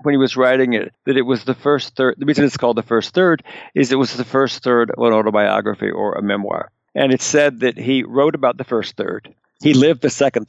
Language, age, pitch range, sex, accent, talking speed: English, 60-79, 120-145 Hz, male, American, 250 wpm